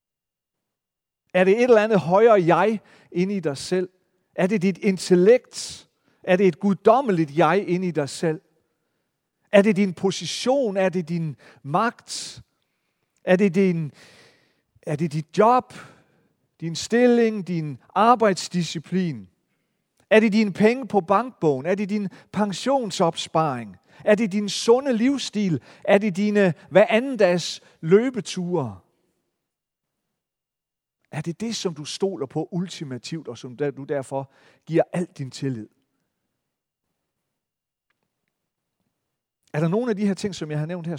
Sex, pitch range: male, 150-205 Hz